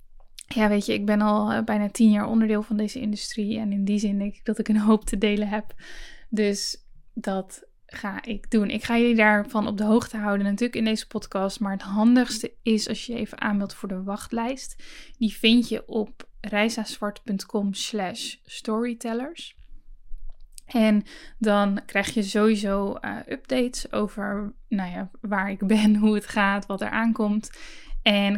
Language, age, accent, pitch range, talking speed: Dutch, 10-29, Dutch, 200-225 Hz, 170 wpm